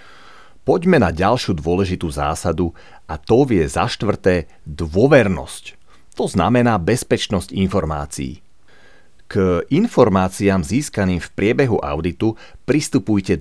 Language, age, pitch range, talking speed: Slovak, 40-59, 90-110 Hz, 100 wpm